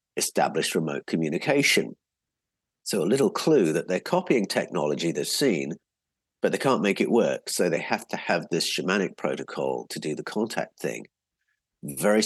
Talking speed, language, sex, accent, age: 160 wpm, English, male, British, 50-69